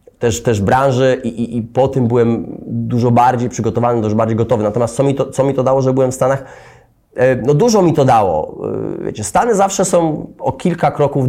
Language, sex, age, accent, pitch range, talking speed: Polish, male, 30-49, native, 115-140 Hz, 205 wpm